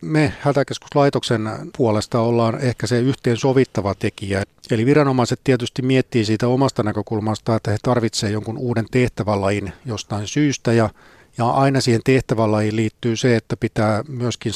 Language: Finnish